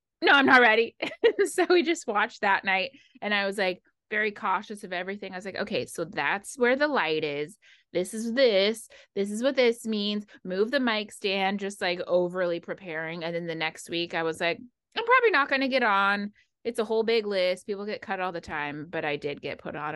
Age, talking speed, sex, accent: 20-39, 230 wpm, female, American